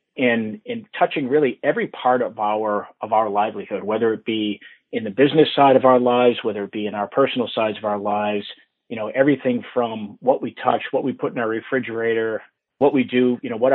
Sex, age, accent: male, 40-59, American